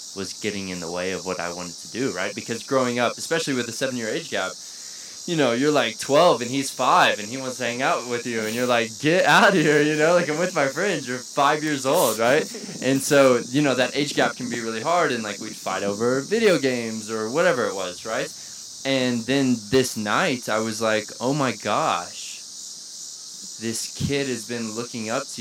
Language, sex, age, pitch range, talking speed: English, male, 20-39, 100-125 Hz, 225 wpm